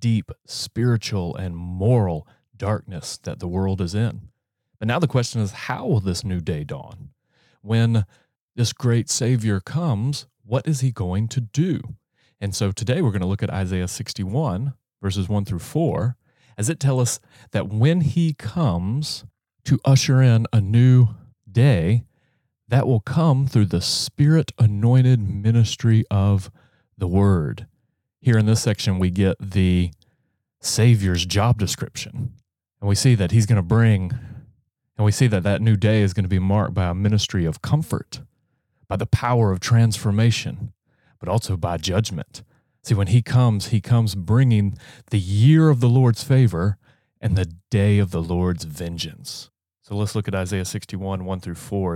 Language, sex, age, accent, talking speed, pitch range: English, male, 40-59, American, 165 wpm, 95-125 Hz